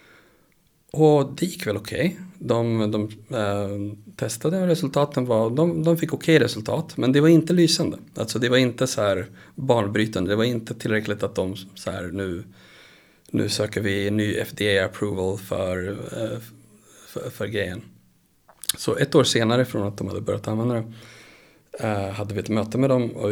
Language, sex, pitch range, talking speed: Swedish, male, 105-150 Hz, 180 wpm